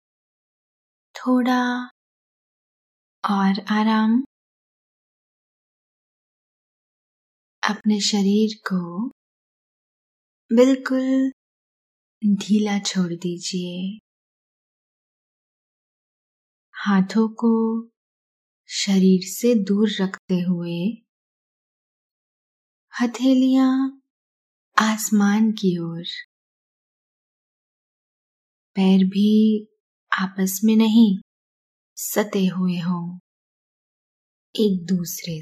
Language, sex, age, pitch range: Hindi, female, 20-39, 185-230 Hz